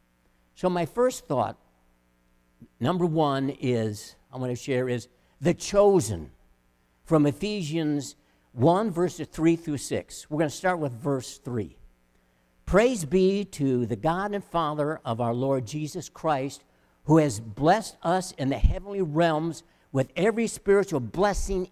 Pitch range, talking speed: 130-215 Hz, 140 wpm